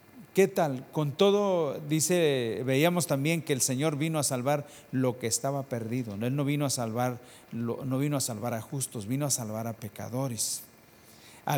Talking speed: 175 wpm